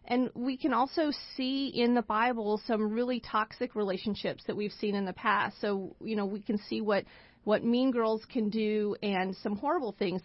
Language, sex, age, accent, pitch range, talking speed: English, female, 40-59, American, 200-235 Hz, 200 wpm